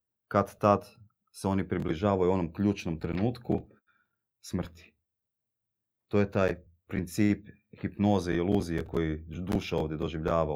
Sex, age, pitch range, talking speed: male, 30-49, 85-110 Hz, 115 wpm